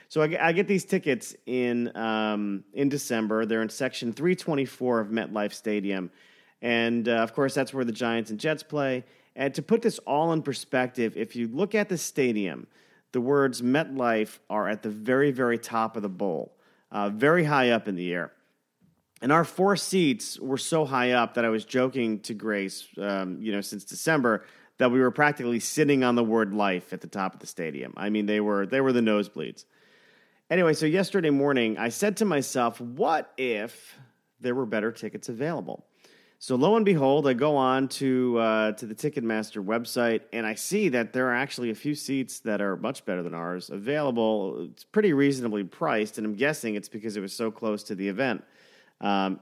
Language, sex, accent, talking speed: English, male, American, 200 wpm